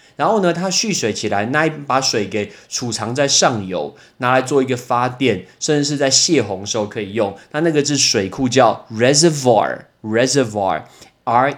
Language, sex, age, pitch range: Chinese, male, 20-39, 110-150 Hz